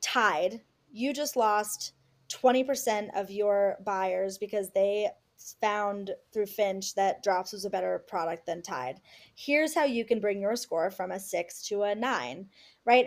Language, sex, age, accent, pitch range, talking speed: English, female, 20-39, American, 195-225 Hz, 160 wpm